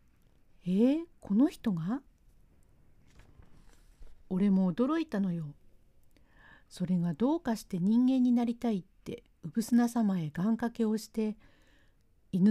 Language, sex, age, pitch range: Japanese, female, 50-69, 170-240 Hz